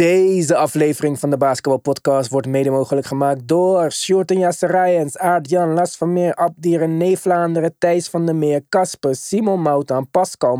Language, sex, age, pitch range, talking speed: Dutch, male, 20-39, 135-180 Hz, 160 wpm